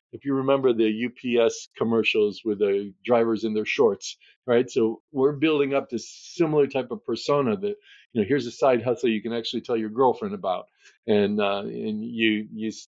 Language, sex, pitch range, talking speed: English, male, 110-135 Hz, 190 wpm